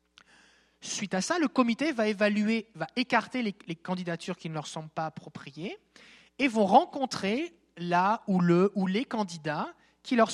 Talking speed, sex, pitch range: 170 wpm, male, 160-215 Hz